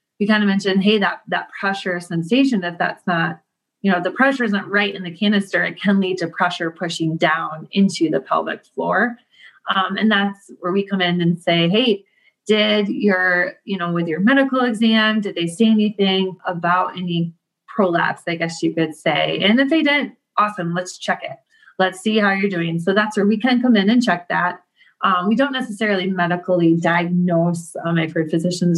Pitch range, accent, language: 175-215 Hz, American, English